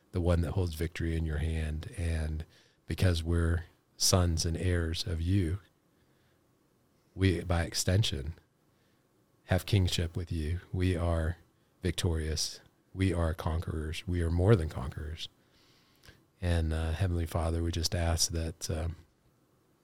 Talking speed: 130 wpm